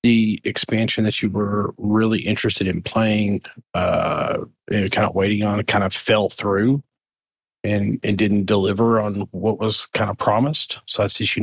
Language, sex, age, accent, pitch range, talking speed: English, male, 40-59, American, 105-120 Hz, 170 wpm